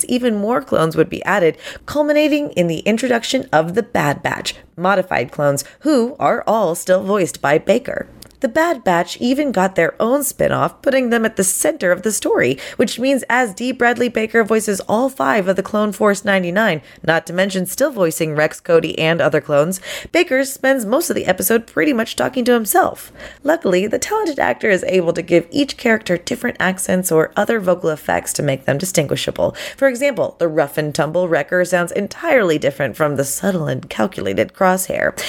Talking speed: 185 wpm